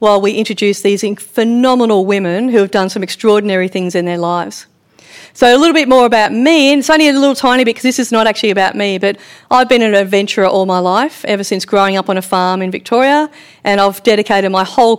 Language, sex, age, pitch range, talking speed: English, female, 40-59, 185-225 Hz, 230 wpm